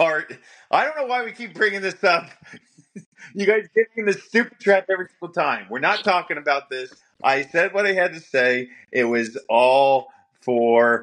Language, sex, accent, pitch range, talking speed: English, male, American, 115-185 Hz, 190 wpm